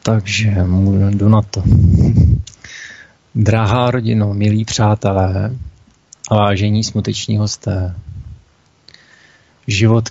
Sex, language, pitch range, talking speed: male, Czech, 95-110 Hz, 85 wpm